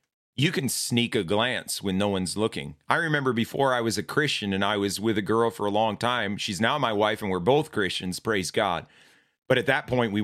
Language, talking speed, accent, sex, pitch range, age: English, 240 wpm, American, male, 105-135 Hz, 30-49